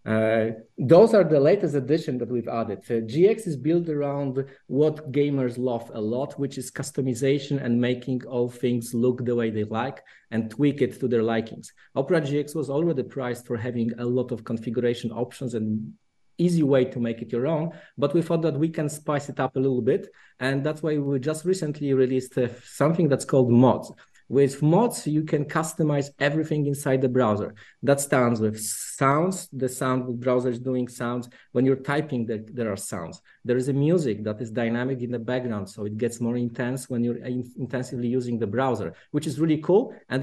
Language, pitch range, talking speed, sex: English, 120-145 Hz, 195 wpm, male